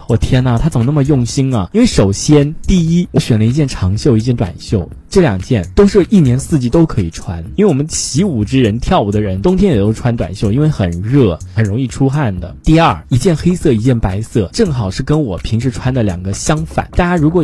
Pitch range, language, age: 115-175 Hz, Chinese, 20-39